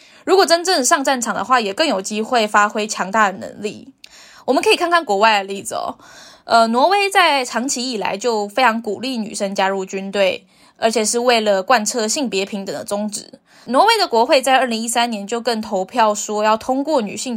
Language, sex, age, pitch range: Chinese, female, 20-39, 205-260 Hz